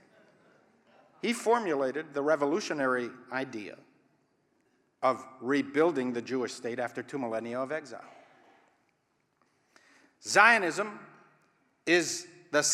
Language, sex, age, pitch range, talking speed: English, male, 50-69, 145-220 Hz, 85 wpm